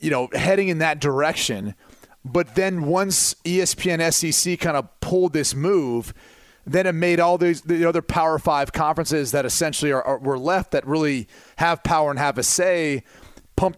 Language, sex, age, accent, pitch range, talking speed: English, male, 30-49, American, 140-175 Hz, 180 wpm